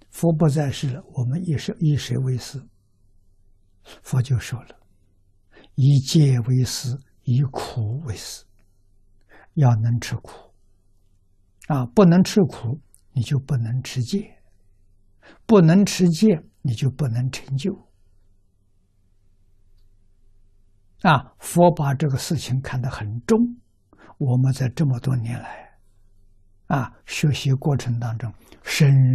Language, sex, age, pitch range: Chinese, male, 60-79, 95-130 Hz